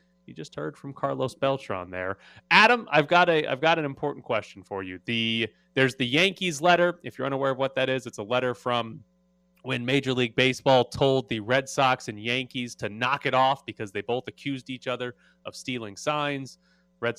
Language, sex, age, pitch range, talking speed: English, male, 30-49, 110-140 Hz, 200 wpm